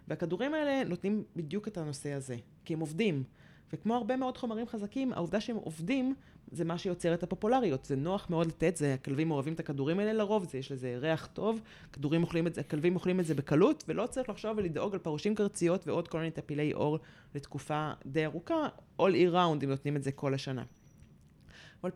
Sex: female